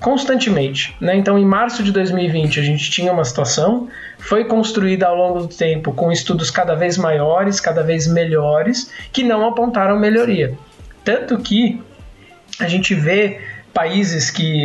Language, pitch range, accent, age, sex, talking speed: Portuguese, 155-215 Hz, Brazilian, 20-39, male, 150 wpm